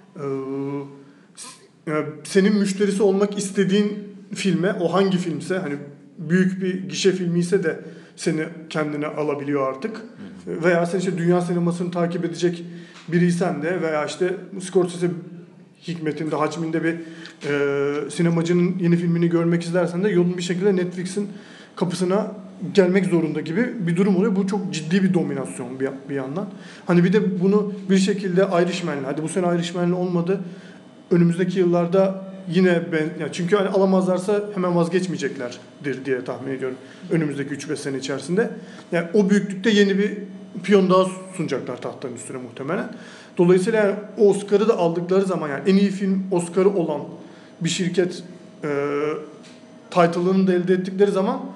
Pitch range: 165-195 Hz